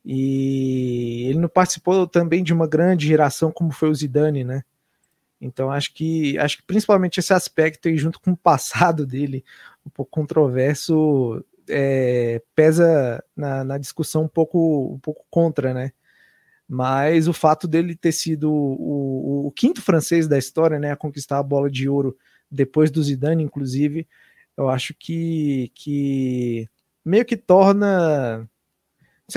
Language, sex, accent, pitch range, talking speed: Portuguese, male, Brazilian, 140-165 Hz, 150 wpm